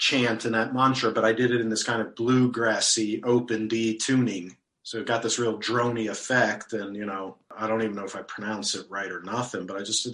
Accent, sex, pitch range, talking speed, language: American, male, 110-125 Hz, 250 wpm, English